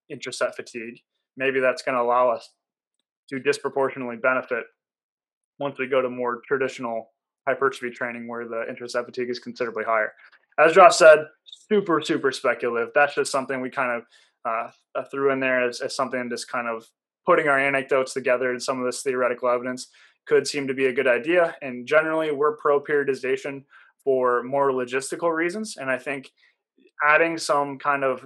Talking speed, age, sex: 170 wpm, 20-39, male